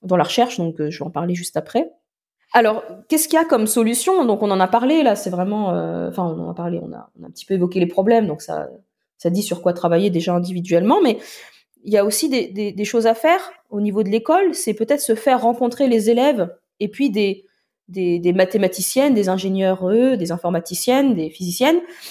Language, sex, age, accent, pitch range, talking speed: French, female, 20-39, French, 185-250 Hz, 230 wpm